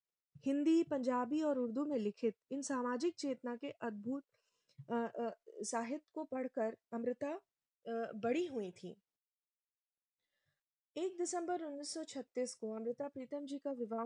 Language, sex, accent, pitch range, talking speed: Hindi, female, native, 230-290 Hz, 110 wpm